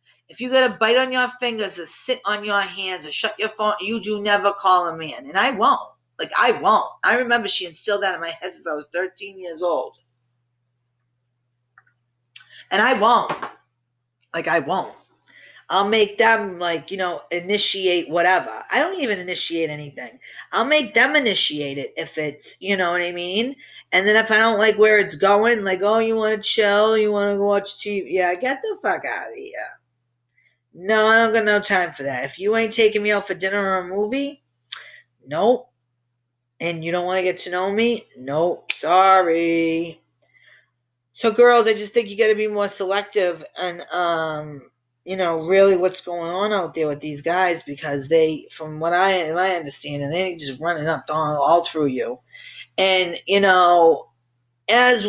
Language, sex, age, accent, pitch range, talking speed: English, female, 40-59, American, 150-210 Hz, 190 wpm